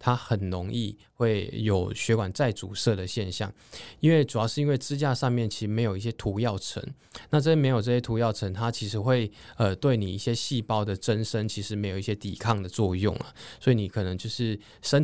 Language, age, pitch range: Chinese, 20-39, 105-125 Hz